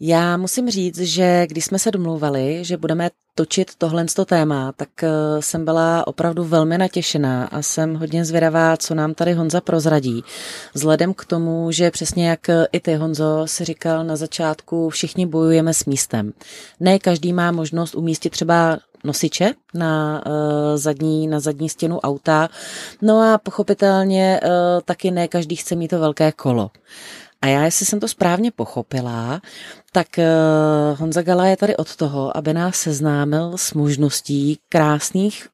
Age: 30-49